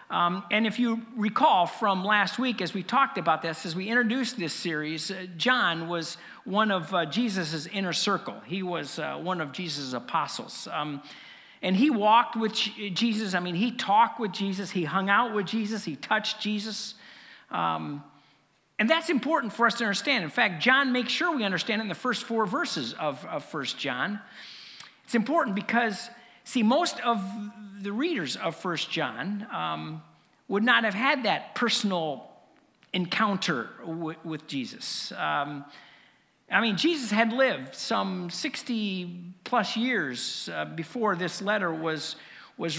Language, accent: English, American